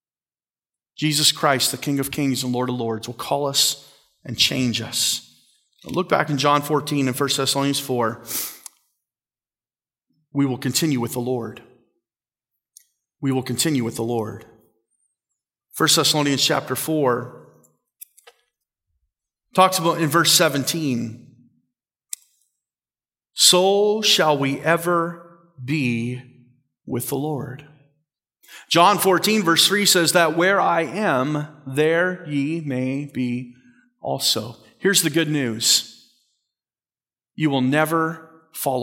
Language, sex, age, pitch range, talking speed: English, male, 40-59, 125-170 Hz, 120 wpm